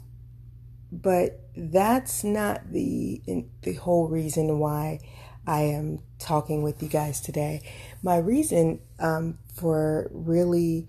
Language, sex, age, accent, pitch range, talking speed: English, female, 30-49, American, 120-165 Hz, 110 wpm